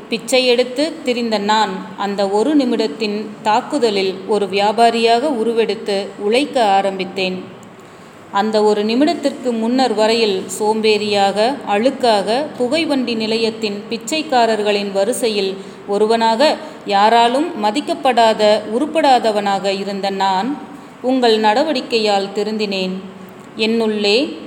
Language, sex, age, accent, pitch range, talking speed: Tamil, female, 30-49, native, 200-245 Hz, 85 wpm